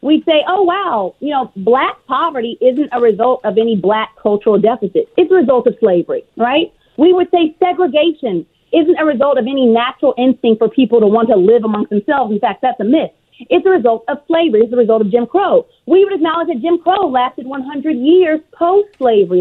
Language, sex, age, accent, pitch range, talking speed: English, female, 40-59, American, 240-325 Hz, 205 wpm